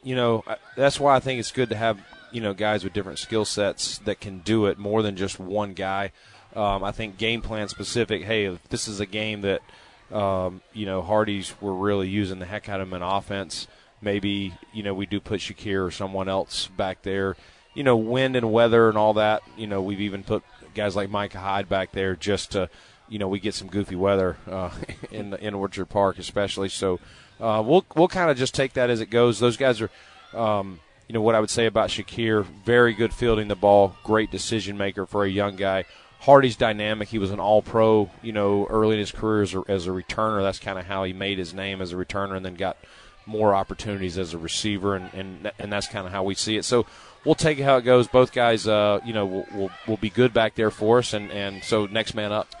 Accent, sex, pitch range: American, male, 95-110 Hz